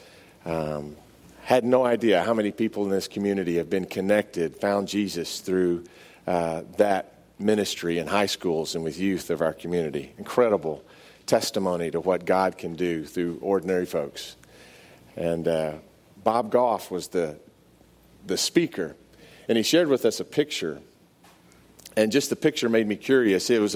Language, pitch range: English, 90-120 Hz